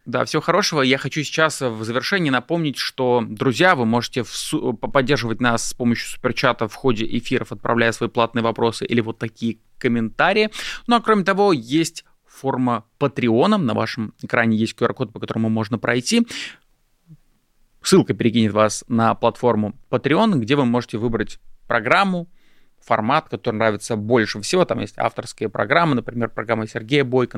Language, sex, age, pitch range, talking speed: Russian, male, 20-39, 115-140 Hz, 155 wpm